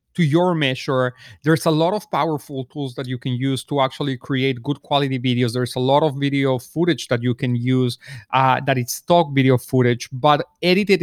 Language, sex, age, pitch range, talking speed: English, male, 30-49, 130-160 Hz, 200 wpm